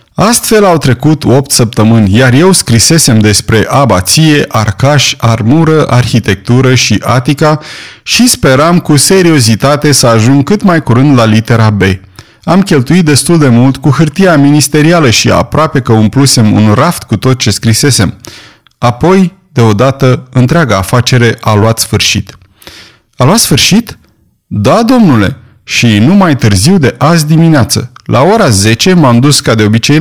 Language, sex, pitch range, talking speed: Romanian, male, 115-160 Hz, 145 wpm